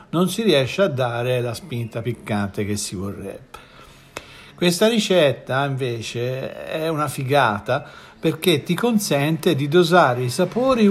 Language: Italian